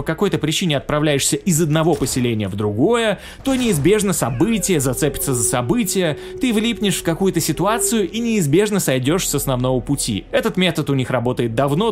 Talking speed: 160 wpm